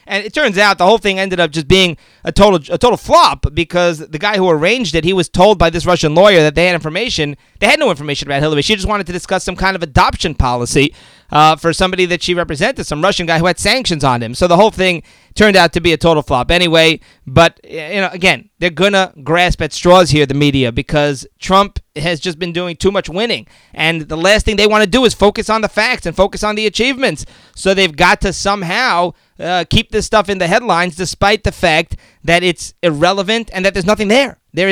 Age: 30-49